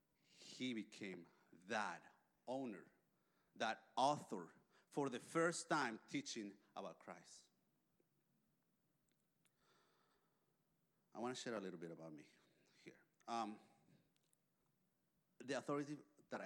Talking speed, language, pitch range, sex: 100 wpm, English, 90-110 Hz, male